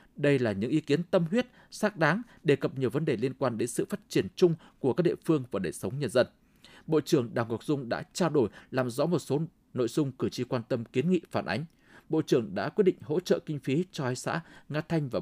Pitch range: 125-170 Hz